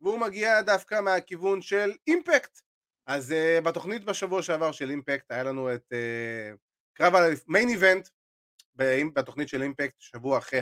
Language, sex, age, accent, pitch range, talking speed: Hebrew, male, 30-49, native, 130-190 Hz, 140 wpm